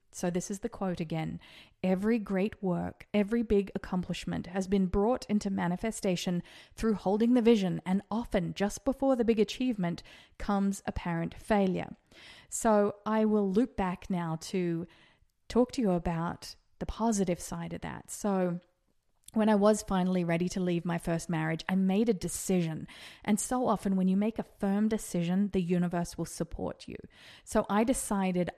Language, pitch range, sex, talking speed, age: English, 175-210 Hz, female, 165 wpm, 20-39